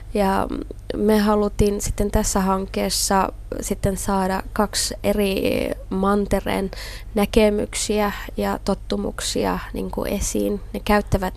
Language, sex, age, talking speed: Finnish, female, 20-39, 100 wpm